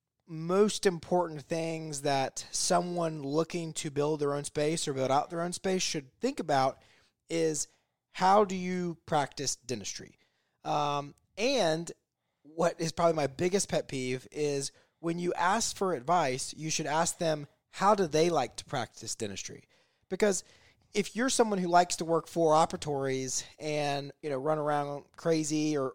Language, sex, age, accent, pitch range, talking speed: English, male, 20-39, American, 140-175 Hz, 160 wpm